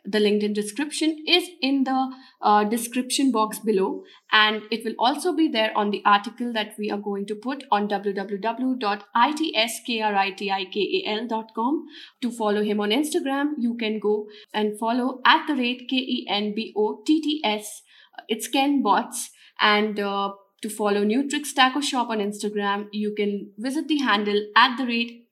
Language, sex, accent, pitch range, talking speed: English, female, Indian, 210-260 Hz, 145 wpm